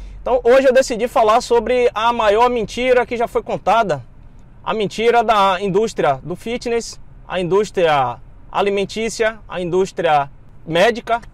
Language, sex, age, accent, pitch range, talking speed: Portuguese, male, 20-39, Brazilian, 175-225 Hz, 130 wpm